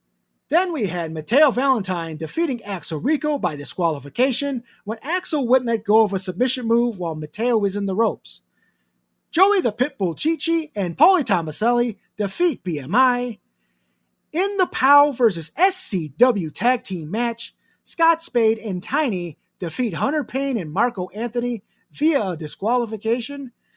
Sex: male